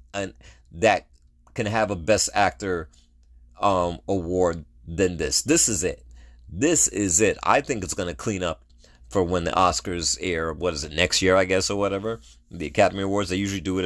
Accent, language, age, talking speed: American, English, 30-49, 185 wpm